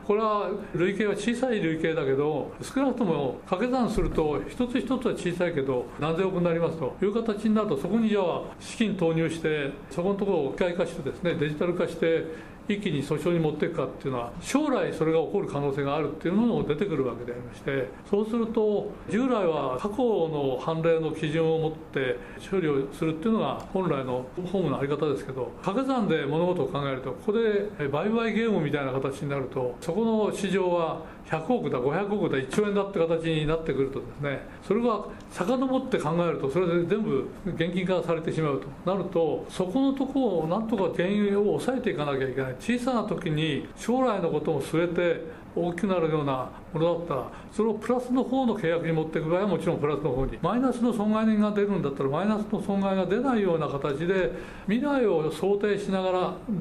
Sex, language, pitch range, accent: male, Japanese, 155-210 Hz, native